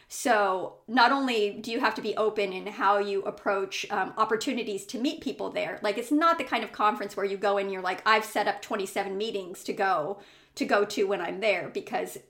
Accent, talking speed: American, 225 wpm